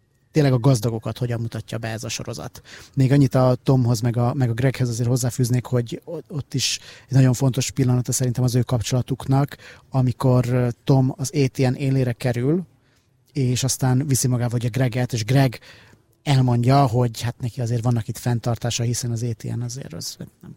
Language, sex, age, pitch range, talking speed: Hungarian, male, 30-49, 120-140 Hz, 170 wpm